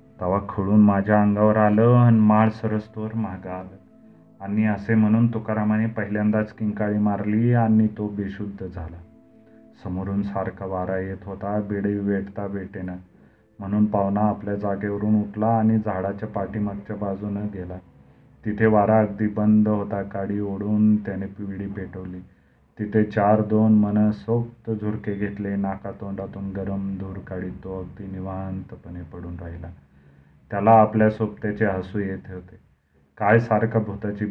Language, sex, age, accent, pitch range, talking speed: Marathi, male, 30-49, native, 95-110 Hz, 130 wpm